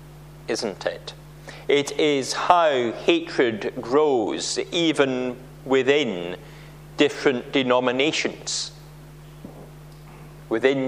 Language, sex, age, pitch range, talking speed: English, male, 40-59, 140-155 Hz, 65 wpm